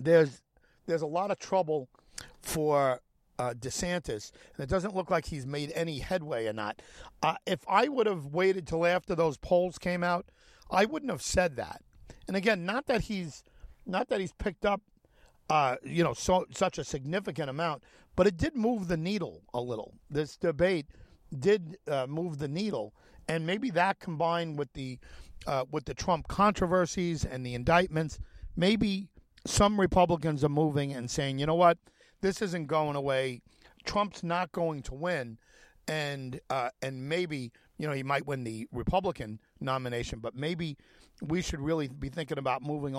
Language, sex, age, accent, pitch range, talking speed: English, male, 50-69, American, 140-185 Hz, 175 wpm